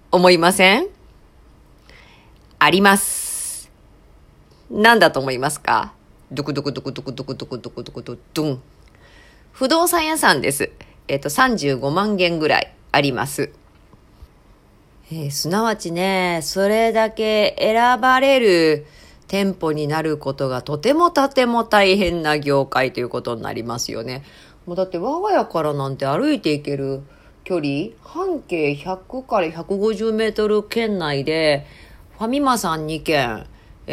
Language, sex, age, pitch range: Japanese, female, 40-59, 140-215 Hz